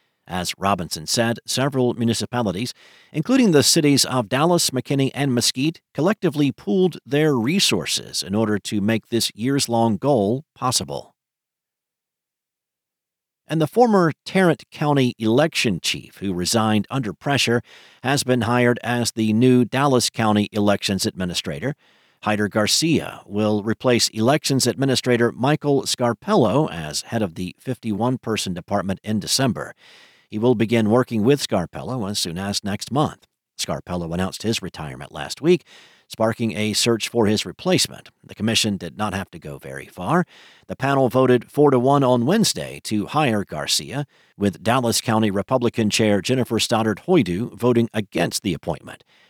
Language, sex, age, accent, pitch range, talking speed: English, male, 50-69, American, 105-130 Hz, 140 wpm